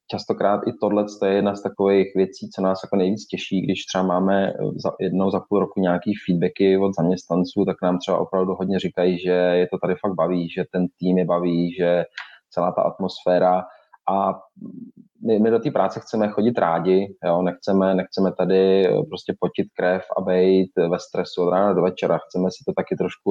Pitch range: 90-105 Hz